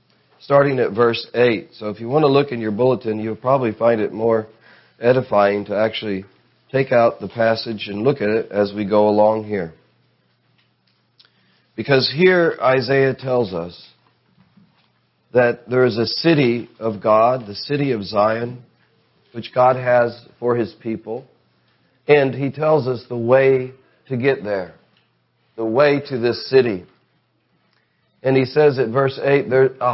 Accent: American